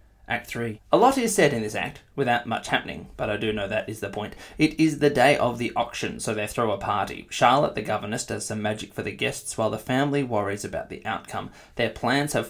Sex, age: male, 20-39